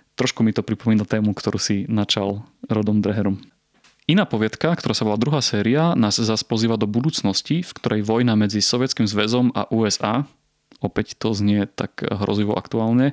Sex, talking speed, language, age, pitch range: male, 165 wpm, Slovak, 30-49, 105-120 Hz